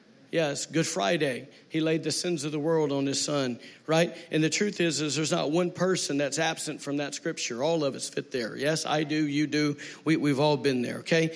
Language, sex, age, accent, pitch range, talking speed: English, male, 50-69, American, 150-180 Hz, 230 wpm